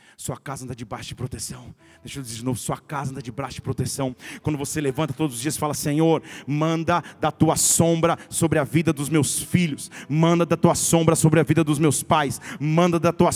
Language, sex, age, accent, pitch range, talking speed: Portuguese, male, 40-59, Brazilian, 160-245 Hz, 220 wpm